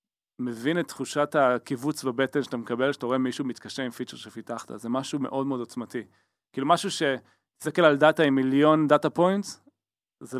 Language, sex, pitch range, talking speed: Hebrew, male, 120-145 Hz, 175 wpm